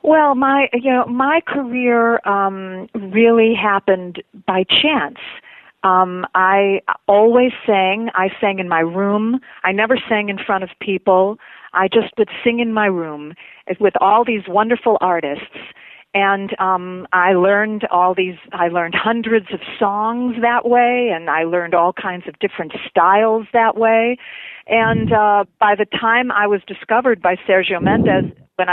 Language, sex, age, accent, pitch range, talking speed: English, female, 40-59, American, 185-235 Hz, 155 wpm